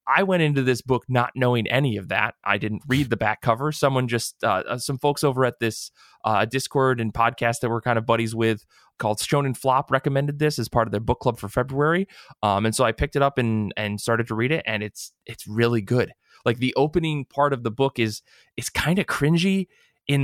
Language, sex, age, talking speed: English, male, 20-39, 230 wpm